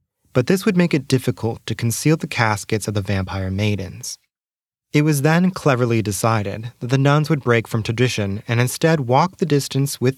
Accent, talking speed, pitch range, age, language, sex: American, 190 wpm, 105-130 Hz, 20-39, English, male